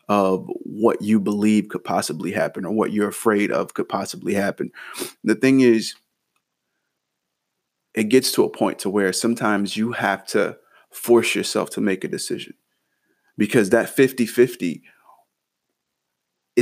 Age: 30-49